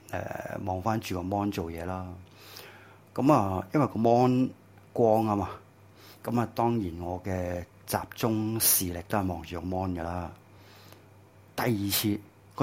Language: Japanese